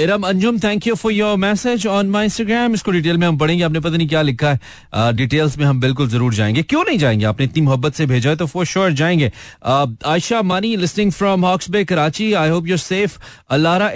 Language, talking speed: Hindi, 205 wpm